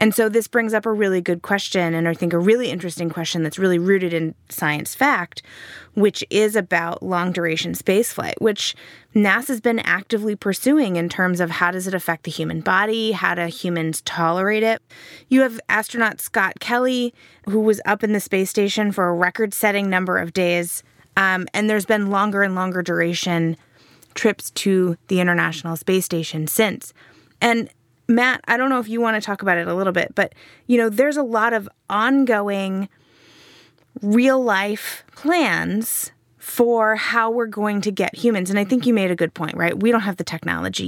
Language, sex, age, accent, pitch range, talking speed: English, female, 20-39, American, 175-225 Hz, 185 wpm